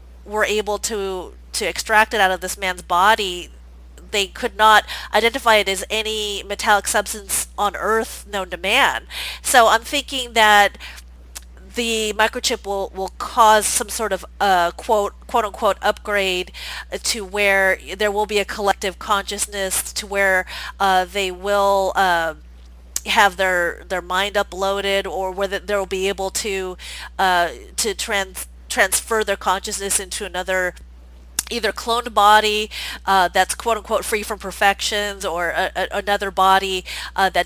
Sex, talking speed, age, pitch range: female, 145 wpm, 30-49, 190-230 Hz